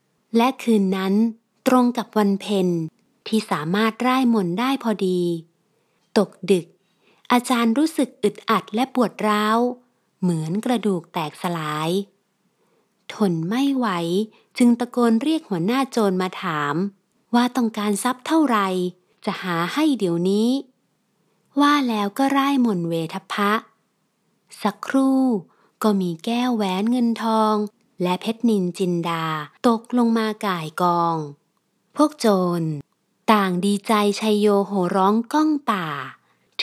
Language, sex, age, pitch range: Thai, female, 30-49, 185-235 Hz